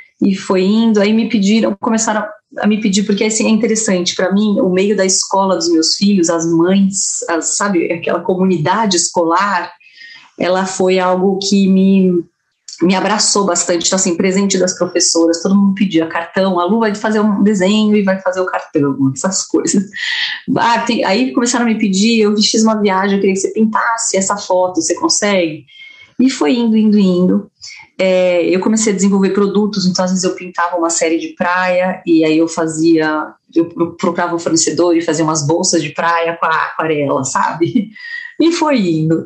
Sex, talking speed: female, 175 wpm